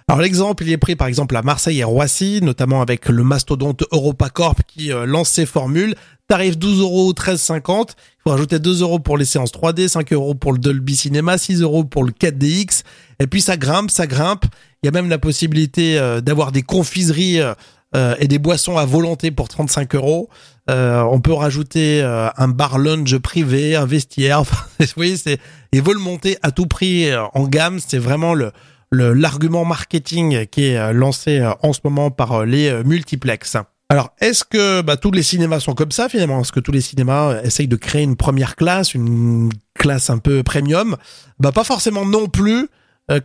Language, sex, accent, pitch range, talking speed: French, male, French, 135-175 Hz, 200 wpm